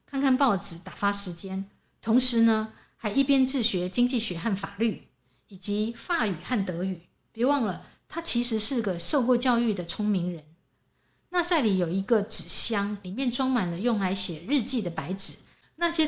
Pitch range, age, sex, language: 185-250 Hz, 50-69, female, Chinese